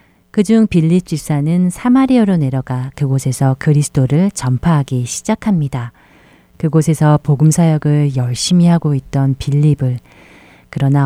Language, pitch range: Korean, 135-170 Hz